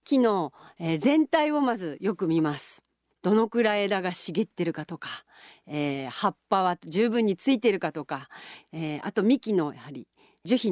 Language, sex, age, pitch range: Japanese, female, 40-59, 160-240 Hz